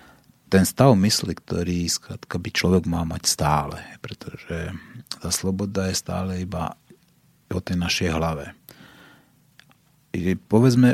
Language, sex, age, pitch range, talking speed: Slovak, male, 30-49, 85-100 Hz, 115 wpm